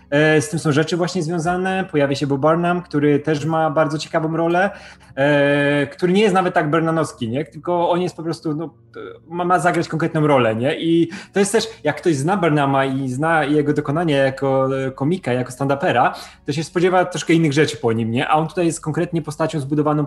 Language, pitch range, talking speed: Polish, 135-160 Hz, 195 wpm